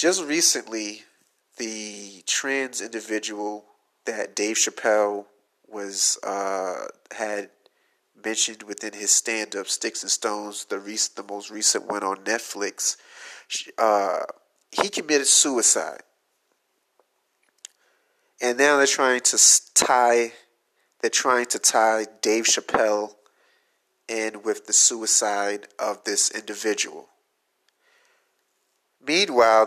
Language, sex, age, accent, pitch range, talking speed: English, male, 30-49, American, 105-145 Hz, 100 wpm